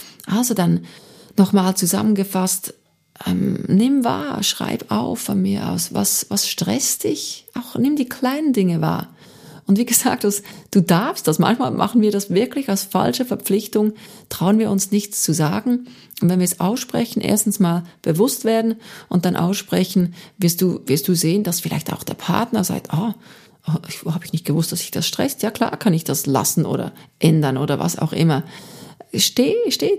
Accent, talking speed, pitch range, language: German, 180 wpm, 170-215 Hz, German